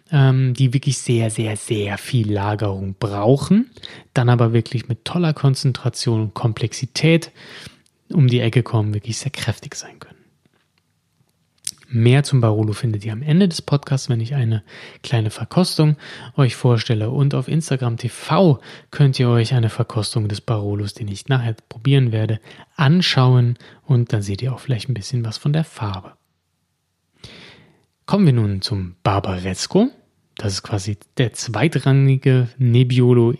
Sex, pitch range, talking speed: male, 110-140 Hz, 145 wpm